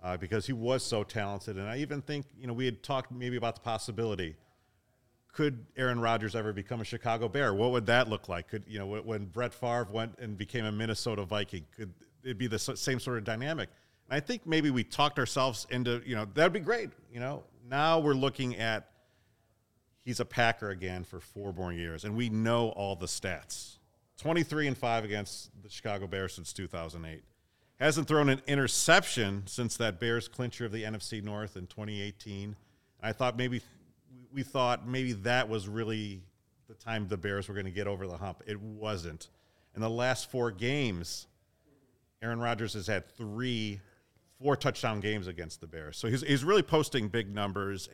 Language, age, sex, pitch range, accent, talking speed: English, 40-59, male, 100-125 Hz, American, 195 wpm